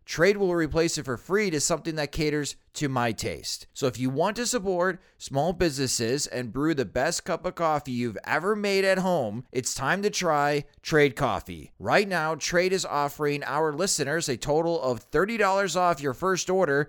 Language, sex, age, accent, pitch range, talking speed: English, male, 30-49, American, 130-170 Hz, 190 wpm